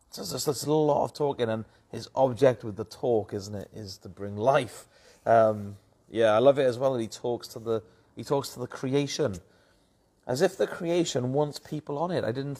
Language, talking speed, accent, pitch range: English, 220 wpm, British, 105-130 Hz